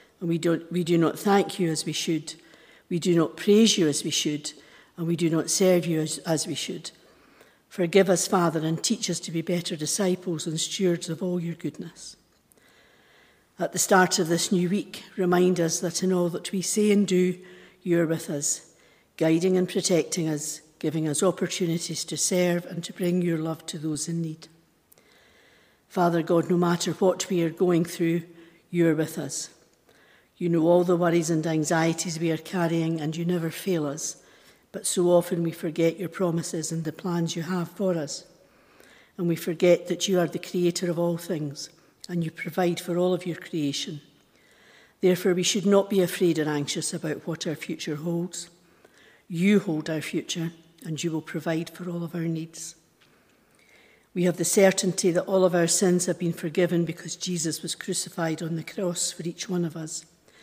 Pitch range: 165-180 Hz